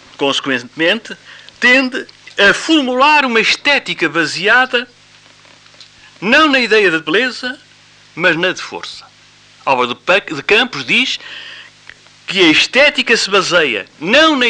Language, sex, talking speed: Spanish, male, 110 wpm